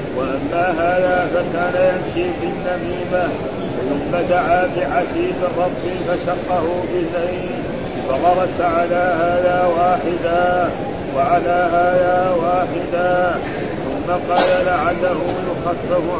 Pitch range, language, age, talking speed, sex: 175-180 Hz, Arabic, 50-69, 85 wpm, male